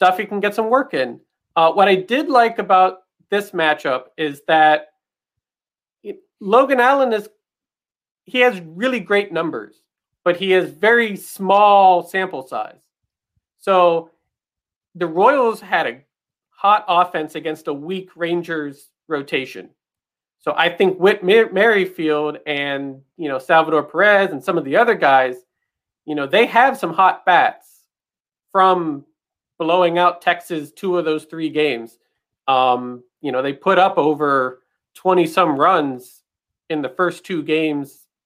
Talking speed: 140 wpm